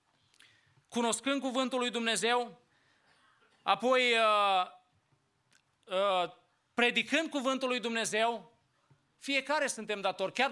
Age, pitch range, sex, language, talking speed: 30-49, 200-250 Hz, male, English, 85 wpm